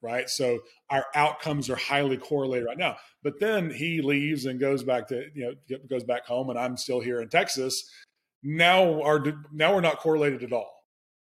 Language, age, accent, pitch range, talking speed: English, 30-49, American, 130-150 Hz, 190 wpm